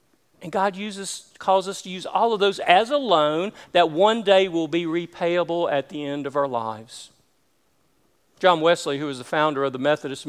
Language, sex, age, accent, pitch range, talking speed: English, male, 40-59, American, 145-200 Hz, 200 wpm